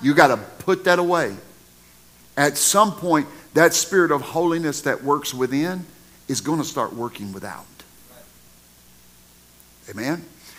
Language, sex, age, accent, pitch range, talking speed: English, male, 50-69, American, 105-150 Hz, 130 wpm